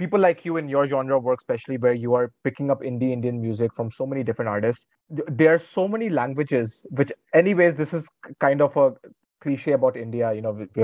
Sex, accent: male, Indian